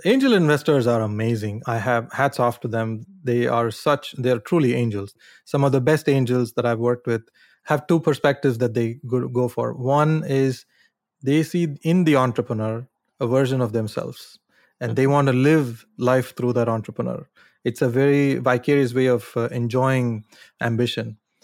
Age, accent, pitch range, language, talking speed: 30-49, Indian, 115-140 Hz, English, 175 wpm